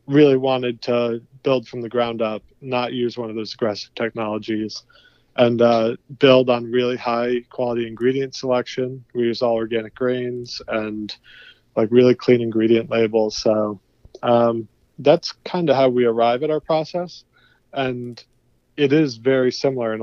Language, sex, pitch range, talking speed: English, male, 115-130 Hz, 155 wpm